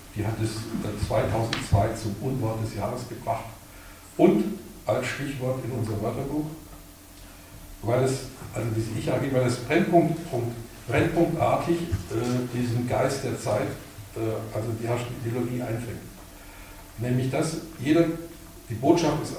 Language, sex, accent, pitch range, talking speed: German, male, German, 100-130 Hz, 130 wpm